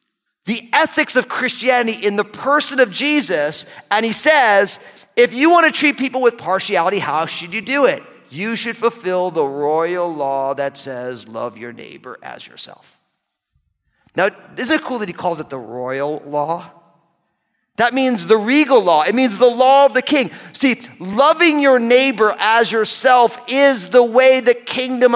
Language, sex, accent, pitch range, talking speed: English, male, American, 185-255 Hz, 170 wpm